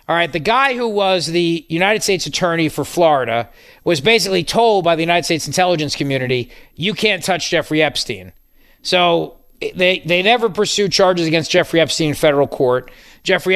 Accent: American